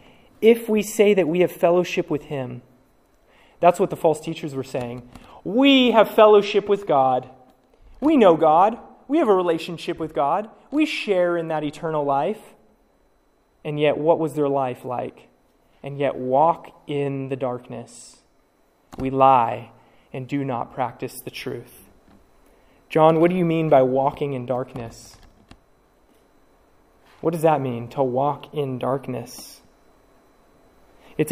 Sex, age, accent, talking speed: male, 20-39, American, 145 wpm